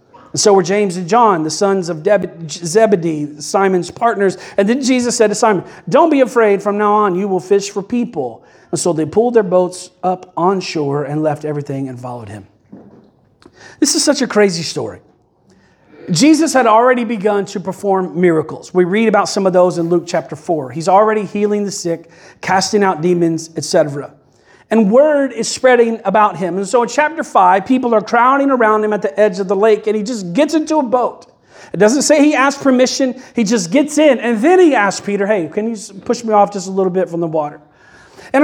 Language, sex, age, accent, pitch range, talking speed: English, male, 40-59, American, 185-250 Hz, 210 wpm